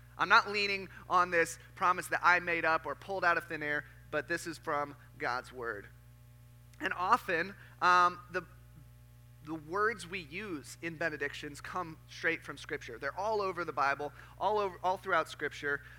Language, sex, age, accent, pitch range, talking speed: English, male, 30-49, American, 135-180 Hz, 175 wpm